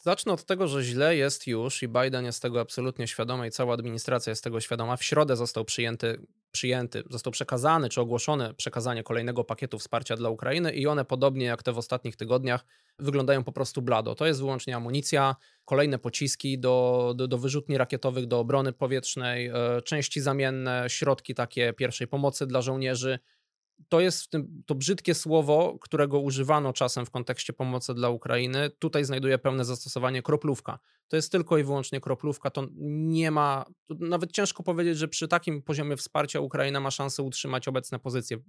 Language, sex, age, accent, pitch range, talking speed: Polish, male, 20-39, native, 125-145 Hz, 175 wpm